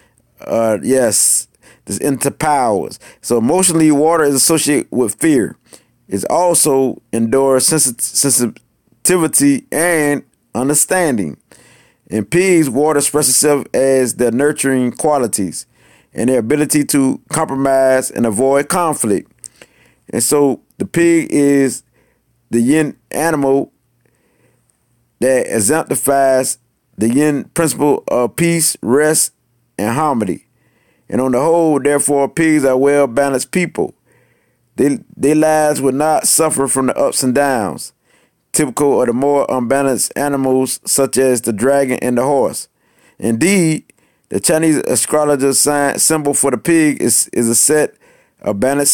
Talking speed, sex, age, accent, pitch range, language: 125 wpm, male, 30-49, American, 130-155 Hz, English